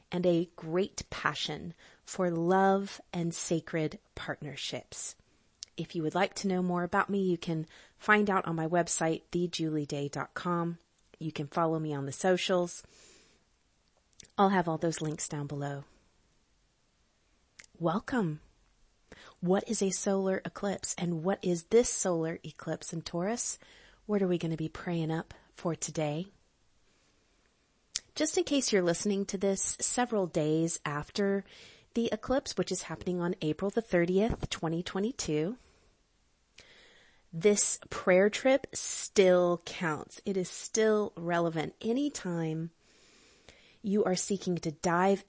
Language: English